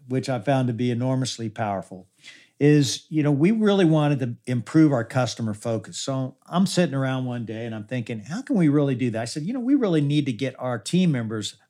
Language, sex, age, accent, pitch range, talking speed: English, male, 50-69, American, 130-190 Hz, 230 wpm